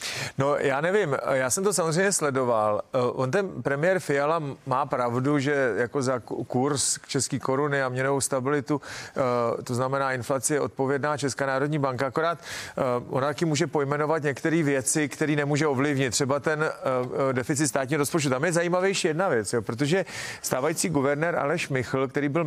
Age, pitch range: 40-59, 135-160 Hz